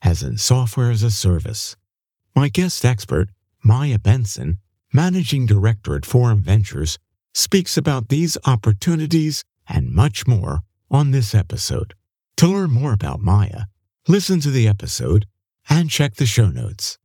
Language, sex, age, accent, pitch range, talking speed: English, male, 50-69, American, 100-140 Hz, 140 wpm